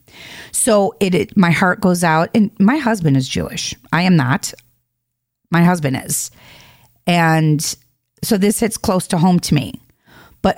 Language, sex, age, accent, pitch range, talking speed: English, female, 40-59, American, 145-210 Hz, 160 wpm